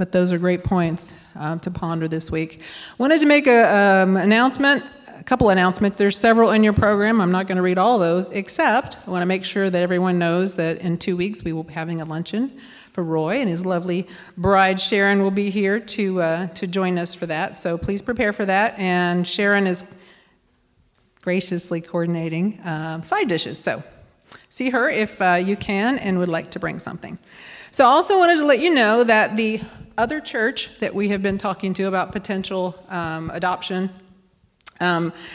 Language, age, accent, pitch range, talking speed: English, 40-59, American, 175-215 Hz, 195 wpm